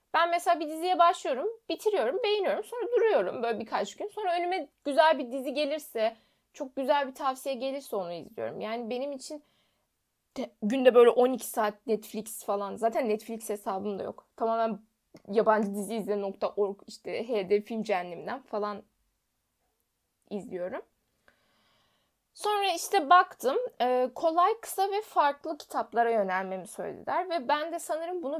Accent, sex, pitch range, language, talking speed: native, female, 215-310 Hz, Turkish, 135 wpm